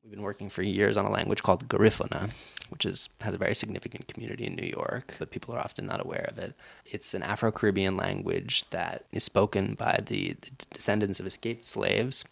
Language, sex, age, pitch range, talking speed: English, male, 20-39, 100-120 Hz, 200 wpm